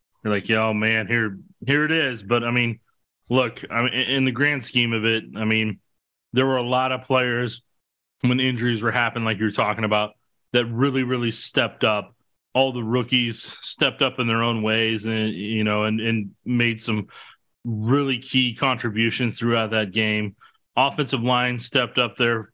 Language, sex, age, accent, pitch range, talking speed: English, male, 20-39, American, 110-130 Hz, 185 wpm